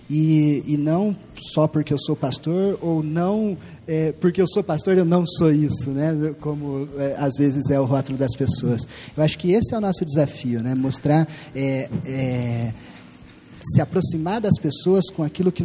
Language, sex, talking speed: Portuguese, male, 185 wpm